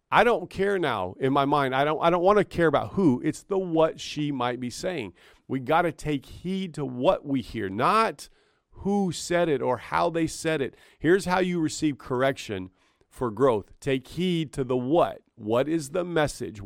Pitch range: 120-160 Hz